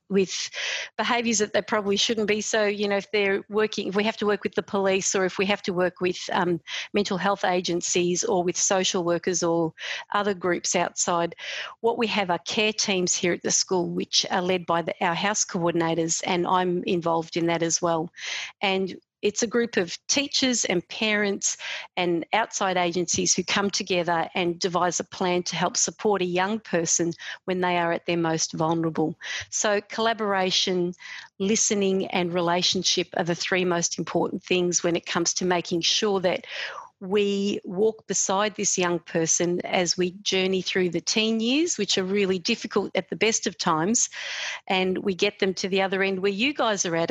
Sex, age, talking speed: female, 50-69, 190 wpm